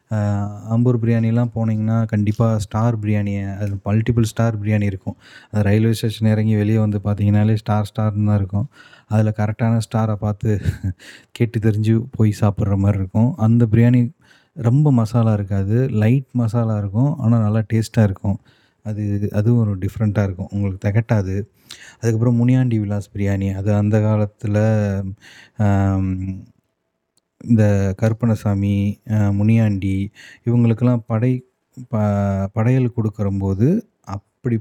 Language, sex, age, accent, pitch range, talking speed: Tamil, male, 20-39, native, 100-120 Hz, 120 wpm